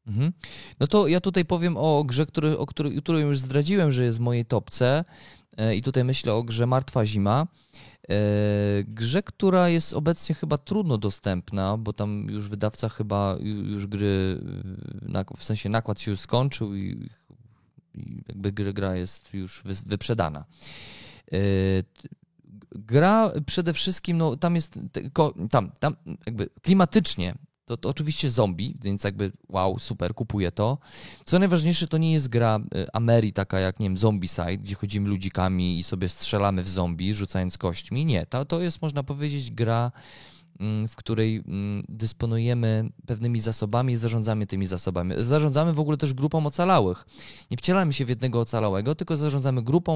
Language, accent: Polish, native